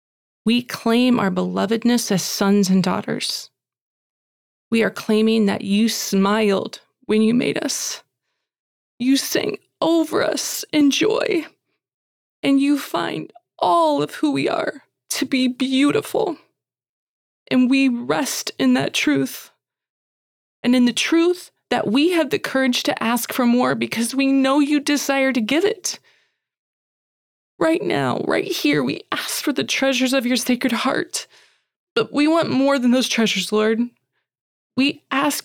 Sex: female